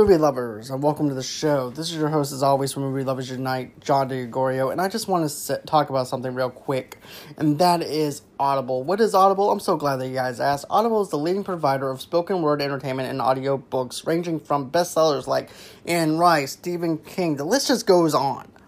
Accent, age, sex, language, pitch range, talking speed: American, 20-39, male, English, 145-190 Hz, 215 wpm